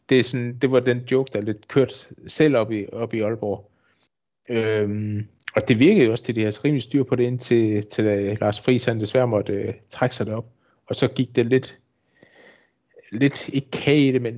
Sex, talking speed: male, 205 wpm